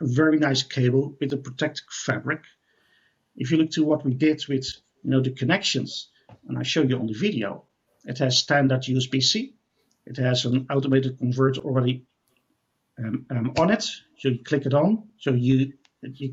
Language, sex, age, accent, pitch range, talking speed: English, male, 50-69, Dutch, 125-165 Hz, 180 wpm